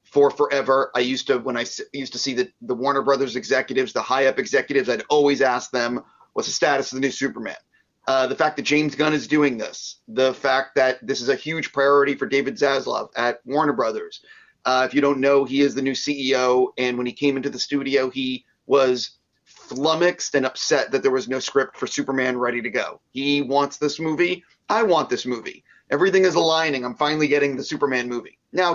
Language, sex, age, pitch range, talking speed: English, male, 30-49, 130-150 Hz, 215 wpm